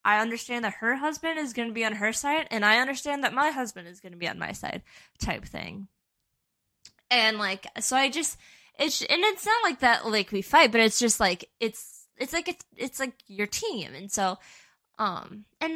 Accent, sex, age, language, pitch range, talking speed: American, female, 10-29, English, 200-270 Hz, 215 wpm